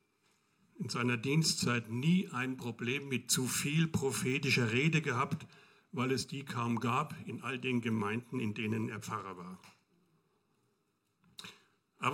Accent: German